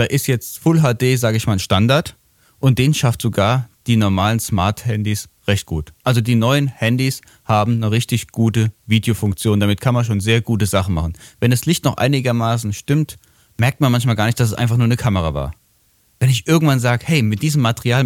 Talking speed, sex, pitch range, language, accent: 205 wpm, male, 105-135 Hz, German, German